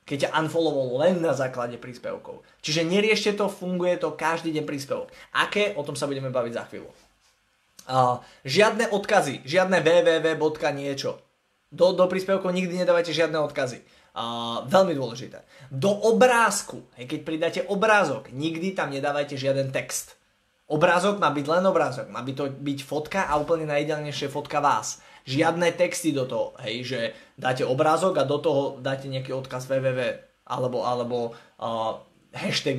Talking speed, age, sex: 150 wpm, 20-39, male